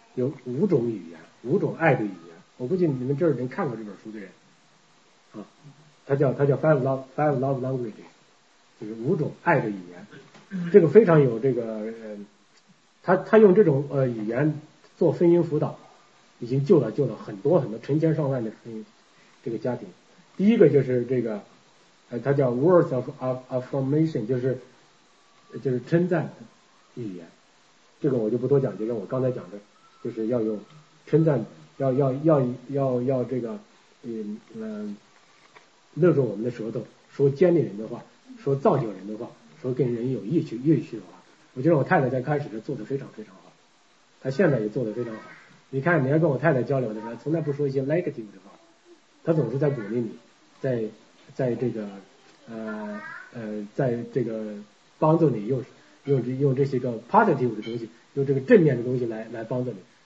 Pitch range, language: 115-150 Hz, English